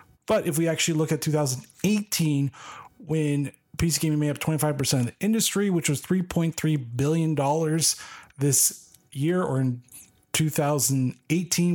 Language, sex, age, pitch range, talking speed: English, male, 20-39, 140-175 Hz, 130 wpm